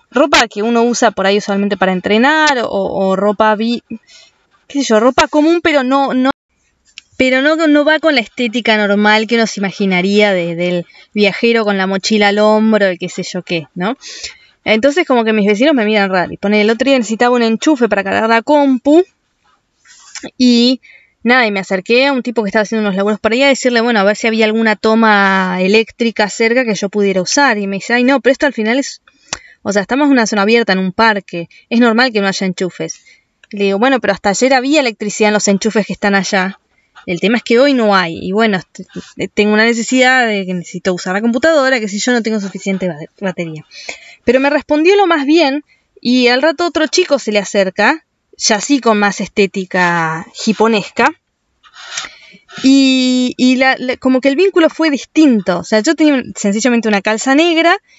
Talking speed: 205 wpm